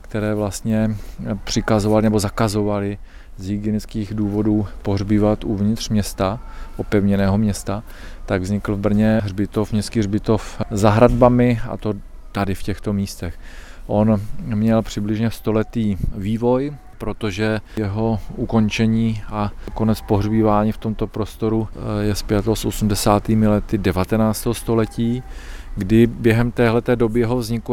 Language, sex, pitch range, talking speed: Slovak, male, 105-115 Hz, 115 wpm